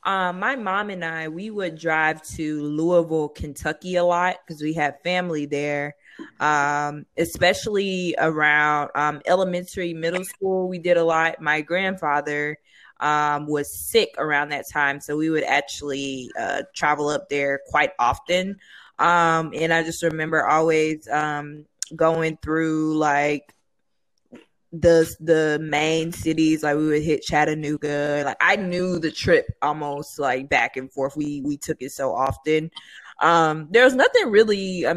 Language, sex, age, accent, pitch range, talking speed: English, female, 20-39, American, 145-175 Hz, 150 wpm